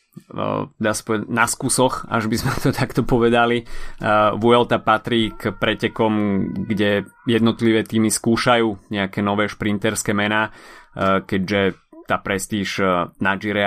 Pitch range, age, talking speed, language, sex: 100-120 Hz, 20-39, 110 wpm, Slovak, male